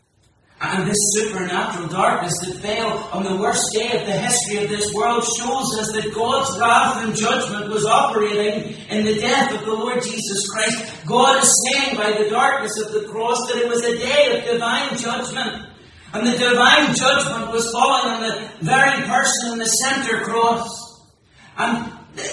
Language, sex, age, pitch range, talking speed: English, male, 40-59, 215-260 Hz, 175 wpm